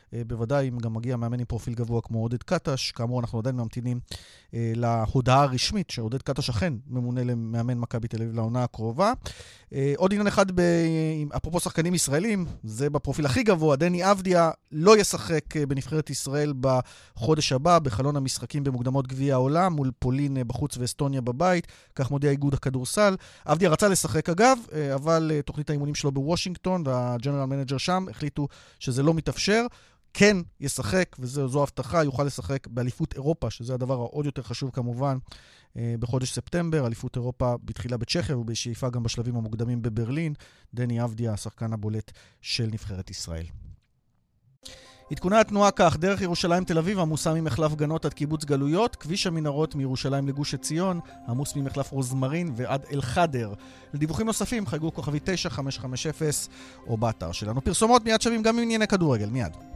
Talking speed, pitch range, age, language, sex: 125 wpm, 120-160 Hz, 30-49, Hebrew, male